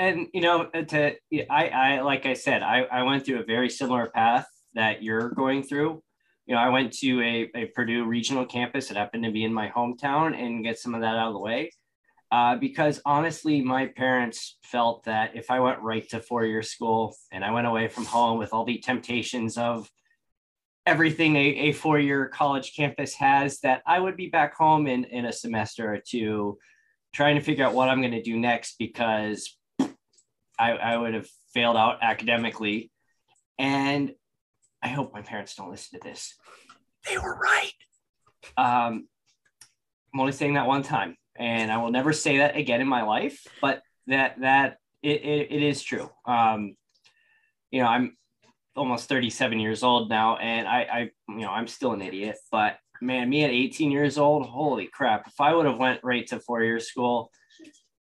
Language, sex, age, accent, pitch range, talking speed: English, male, 20-39, American, 115-140 Hz, 190 wpm